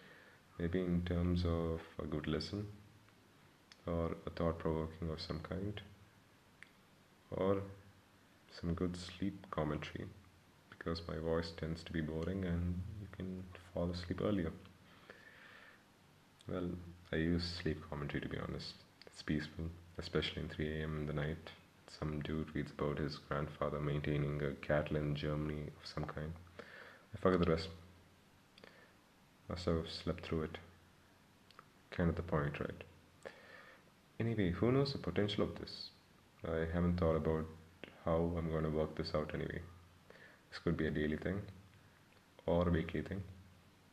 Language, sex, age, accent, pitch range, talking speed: English, male, 30-49, Indian, 80-95 Hz, 140 wpm